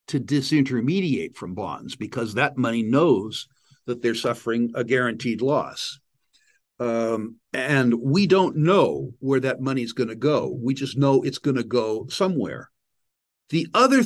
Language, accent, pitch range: English, American, 120-155 Hz